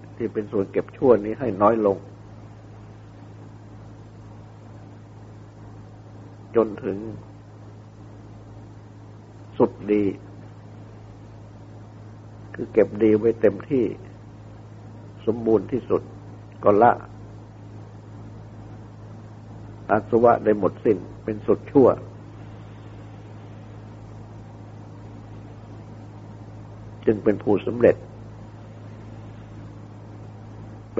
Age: 60-79